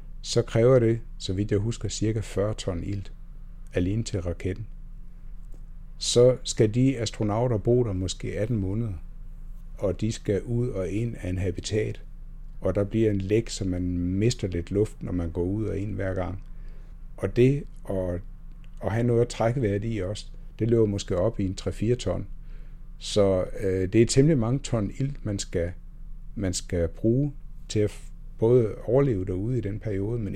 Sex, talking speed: male, 180 wpm